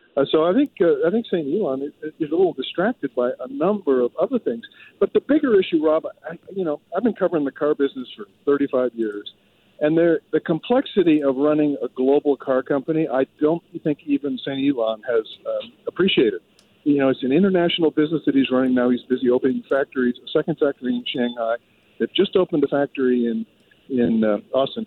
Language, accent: English, American